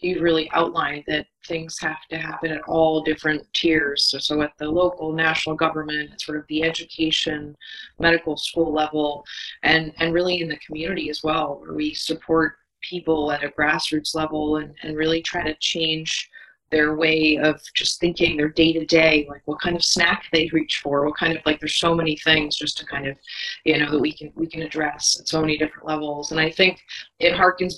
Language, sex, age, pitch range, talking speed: English, female, 30-49, 150-165 Hz, 205 wpm